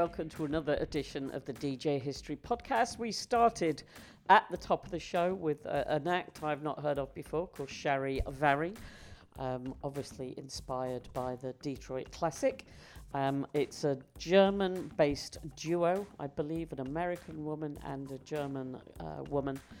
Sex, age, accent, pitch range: female, 50-69, British, 135-170 Hz